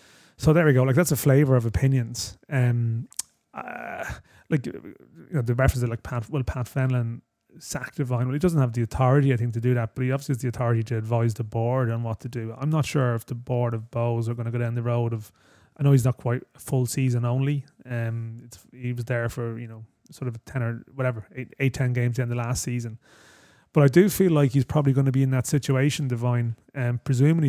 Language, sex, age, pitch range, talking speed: English, male, 30-49, 120-135 Hz, 245 wpm